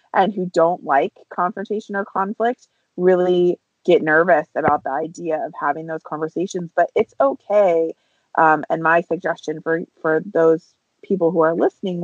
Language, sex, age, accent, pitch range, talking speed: English, female, 30-49, American, 155-180 Hz, 155 wpm